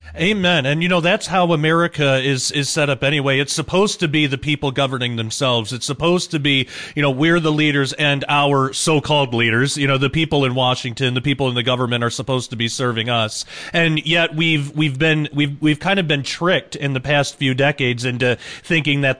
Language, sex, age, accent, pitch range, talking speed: English, male, 30-49, American, 130-155 Hz, 215 wpm